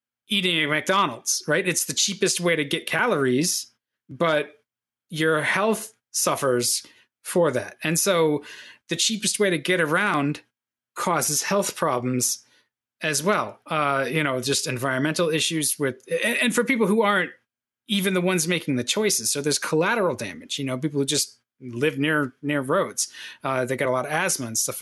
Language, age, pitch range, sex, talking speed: English, 30-49, 135-185 Hz, male, 170 wpm